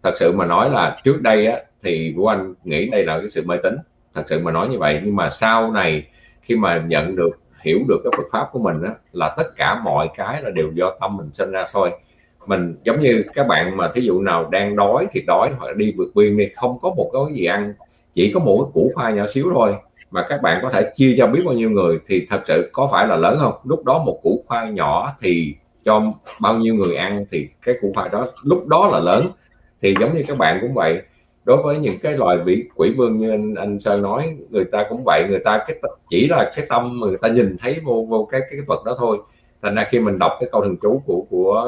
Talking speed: 260 wpm